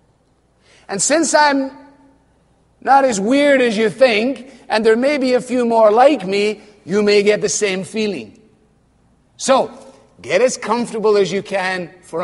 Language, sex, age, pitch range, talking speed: English, male, 40-59, 160-225 Hz, 155 wpm